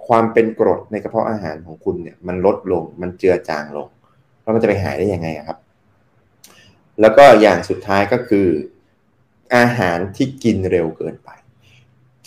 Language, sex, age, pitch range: Thai, male, 20-39, 95-130 Hz